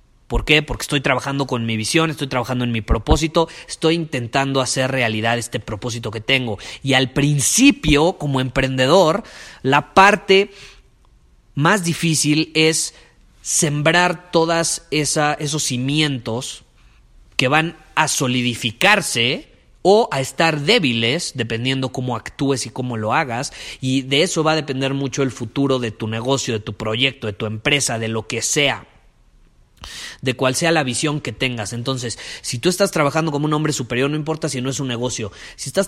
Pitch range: 120-155 Hz